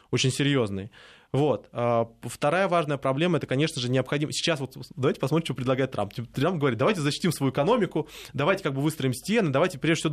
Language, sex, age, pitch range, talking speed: Russian, male, 20-39, 135-180 Hz, 185 wpm